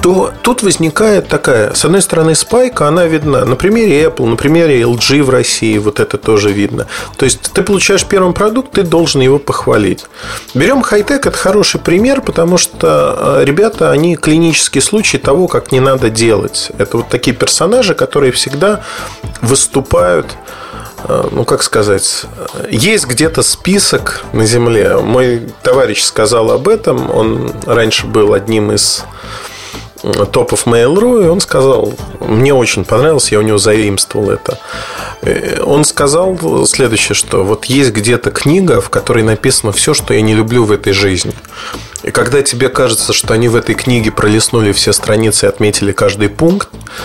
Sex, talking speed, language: male, 155 wpm, Russian